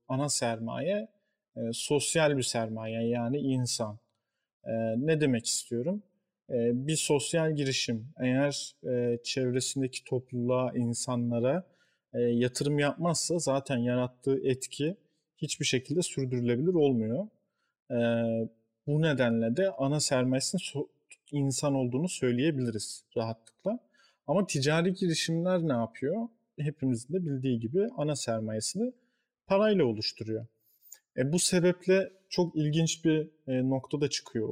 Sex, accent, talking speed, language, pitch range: male, native, 115 wpm, Turkish, 120-155 Hz